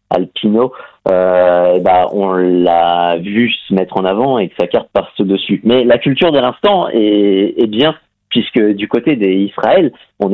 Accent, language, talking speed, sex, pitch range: French, French, 170 wpm, male, 85-105 Hz